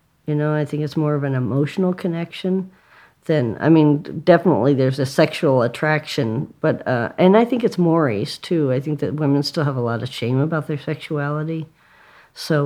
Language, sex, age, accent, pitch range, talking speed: English, female, 50-69, American, 135-165 Hz, 190 wpm